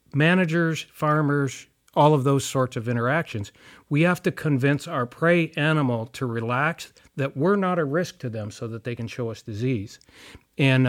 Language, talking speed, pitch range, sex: English, 175 wpm, 120-150 Hz, male